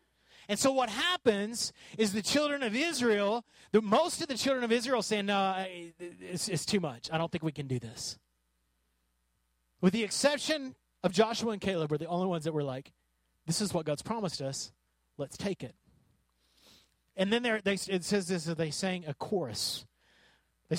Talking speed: 180 wpm